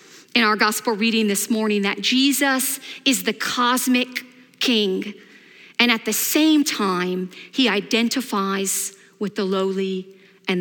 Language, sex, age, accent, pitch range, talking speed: English, female, 40-59, American, 205-250 Hz, 130 wpm